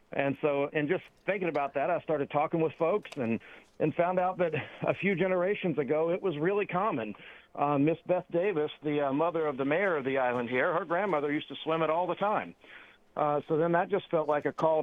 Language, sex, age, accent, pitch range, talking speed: English, male, 50-69, American, 145-180 Hz, 230 wpm